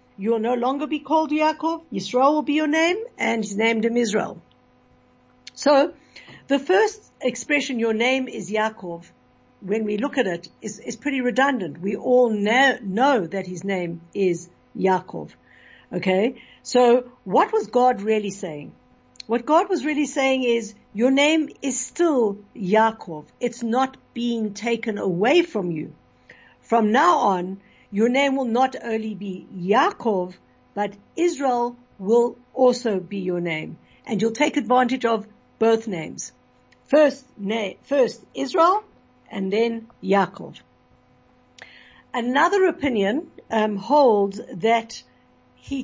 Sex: female